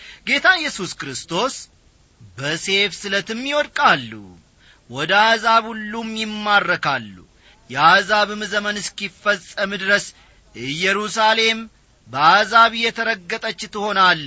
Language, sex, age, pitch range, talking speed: English, male, 40-59, 145-215 Hz, 95 wpm